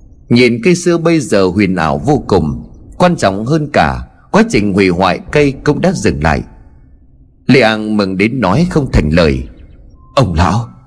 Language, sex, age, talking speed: Vietnamese, male, 30-49, 170 wpm